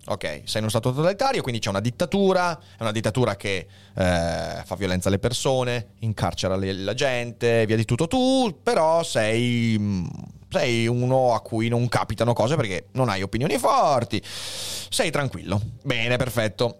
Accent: native